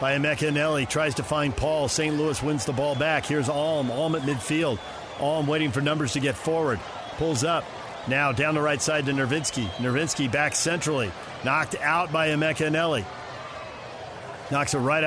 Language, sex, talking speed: English, male, 170 wpm